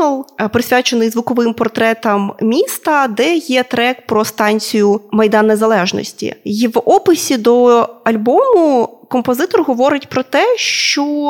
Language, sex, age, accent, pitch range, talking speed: Ukrainian, female, 20-39, native, 235-290 Hz, 110 wpm